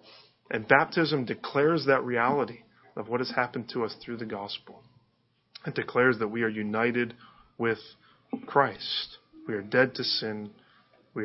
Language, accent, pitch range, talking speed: English, American, 115-145 Hz, 150 wpm